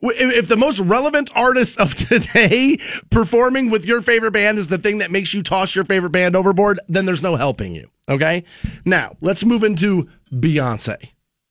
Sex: male